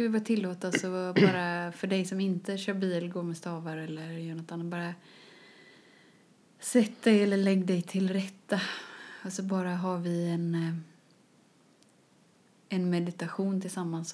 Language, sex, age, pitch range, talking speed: Swedish, female, 30-49, 170-195 Hz, 145 wpm